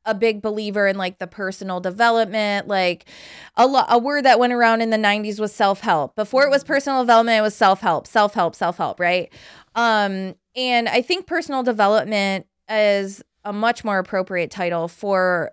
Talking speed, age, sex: 175 wpm, 20-39, female